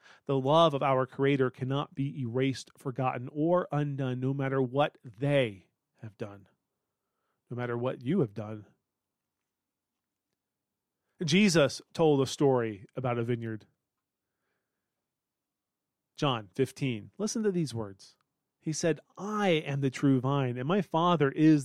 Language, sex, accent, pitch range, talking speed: English, male, American, 125-160 Hz, 130 wpm